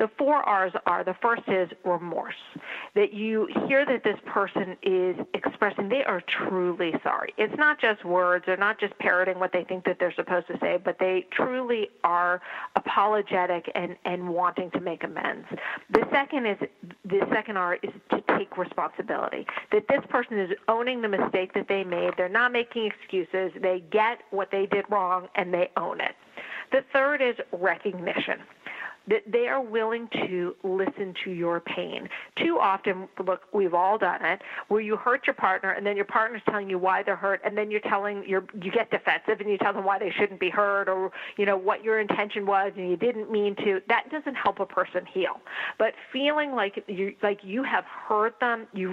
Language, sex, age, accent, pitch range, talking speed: English, female, 50-69, American, 185-225 Hz, 195 wpm